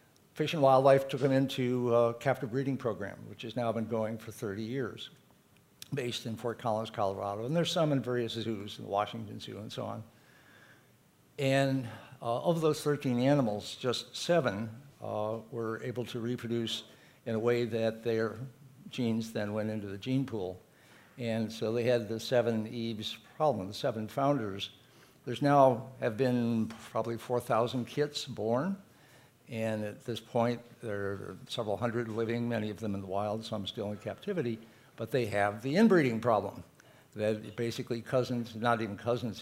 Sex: male